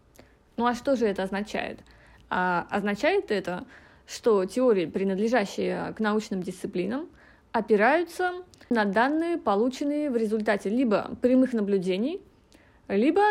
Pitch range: 205-275 Hz